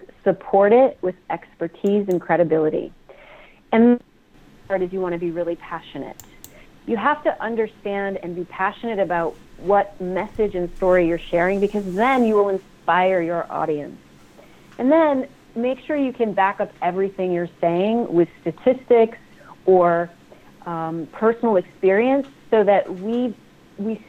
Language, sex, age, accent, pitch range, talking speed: English, female, 30-49, American, 170-220 Hz, 140 wpm